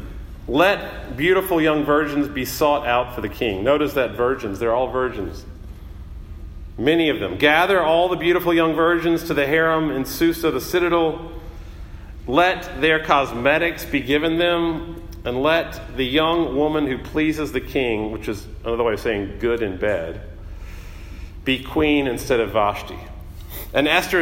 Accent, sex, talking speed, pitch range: American, male, 155 wpm, 95-150 Hz